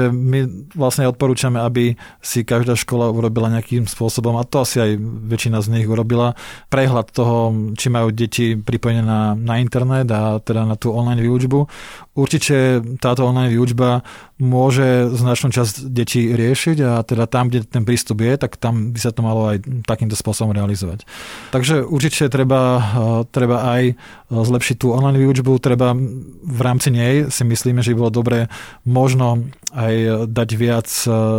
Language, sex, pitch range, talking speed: Slovak, male, 115-130 Hz, 155 wpm